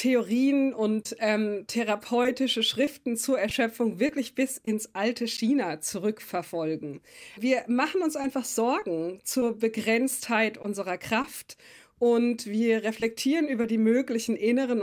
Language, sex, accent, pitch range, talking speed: German, female, German, 215-260 Hz, 115 wpm